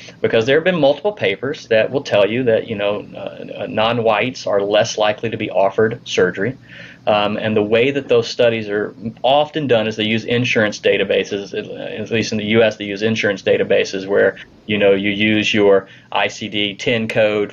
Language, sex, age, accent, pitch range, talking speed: English, male, 30-49, American, 105-140 Hz, 185 wpm